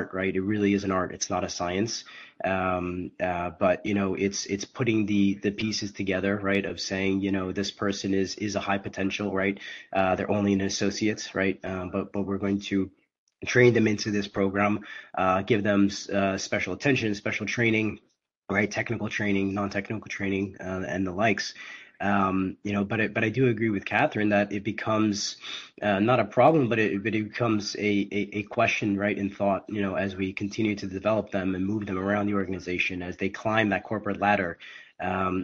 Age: 20-39